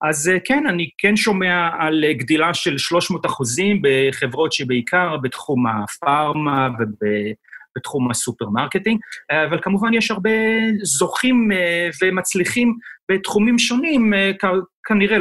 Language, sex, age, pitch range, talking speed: Hebrew, male, 40-59, 130-200 Hz, 100 wpm